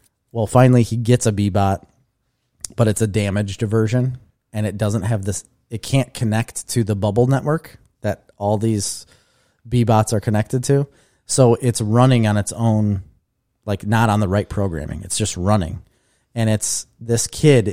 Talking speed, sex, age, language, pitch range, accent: 165 wpm, male, 30-49, English, 100-120 Hz, American